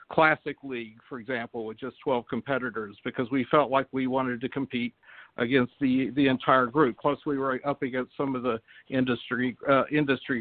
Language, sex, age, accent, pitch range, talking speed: English, male, 60-79, American, 130-160 Hz, 185 wpm